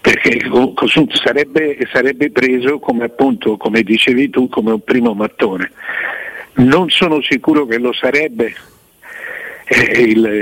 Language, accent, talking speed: Italian, native, 115 wpm